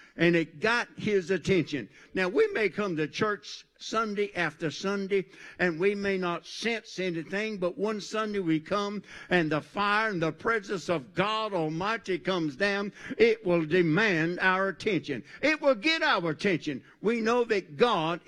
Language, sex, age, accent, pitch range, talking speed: English, male, 60-79, American, 170-220 Hz, 165 wpm